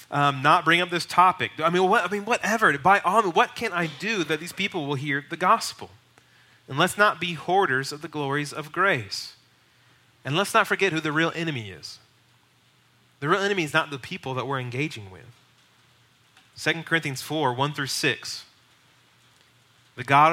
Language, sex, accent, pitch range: English, male, American, 125-170 Hz